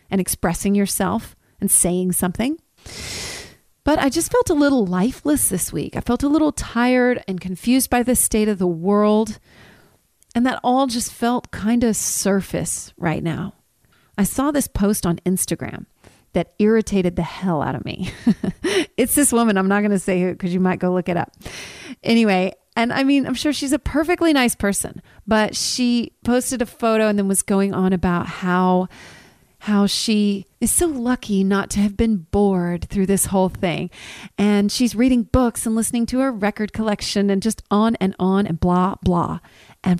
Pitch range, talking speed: 190-250 Hz, 185 wpm